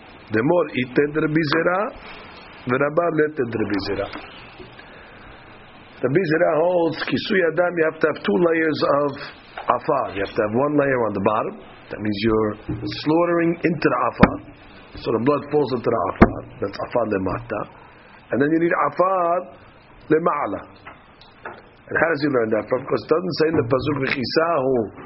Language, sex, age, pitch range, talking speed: English, male, 50-69, 130-175 Hz, 165 wpm